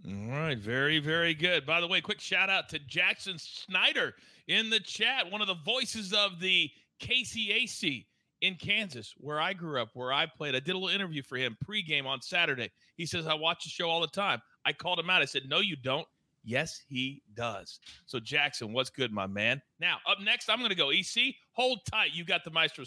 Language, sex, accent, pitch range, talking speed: English, male, American, 145-215 Hz, 220 wpm